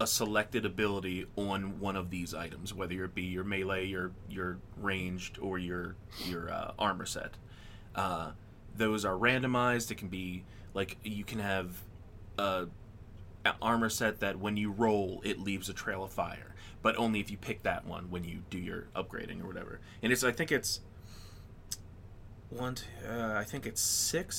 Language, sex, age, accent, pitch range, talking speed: English, male, 20-39, American, 95-115 Hz, 180 wpm